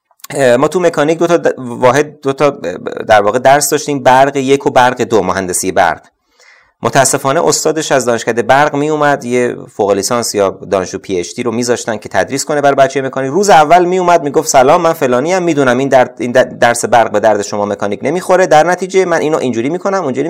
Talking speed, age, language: 205 wpm, 30-49, Persian